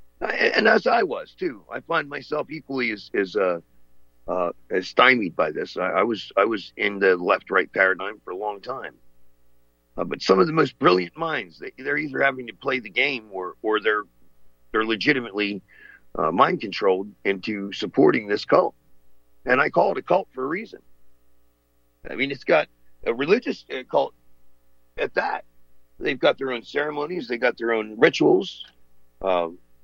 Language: English